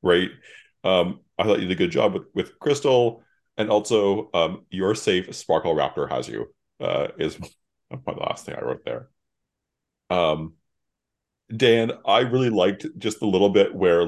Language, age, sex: English, 30-49, male